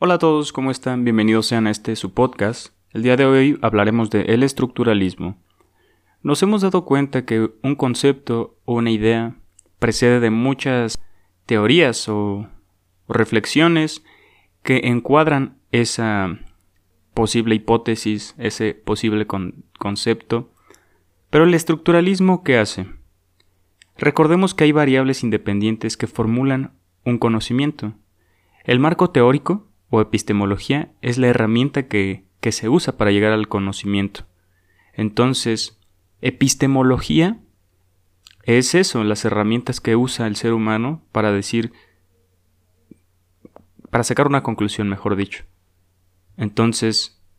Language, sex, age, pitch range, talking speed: Spanish, male, 30-49, 100-130 Hz, 120 wpm